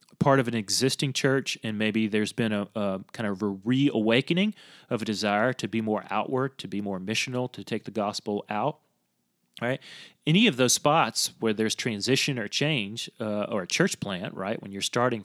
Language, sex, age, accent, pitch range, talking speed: English, male, 30-49, American, 110-145 Hz, 195 wpm